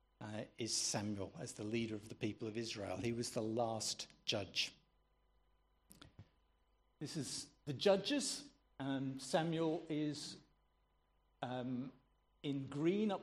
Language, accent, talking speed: English, British, 120 wpm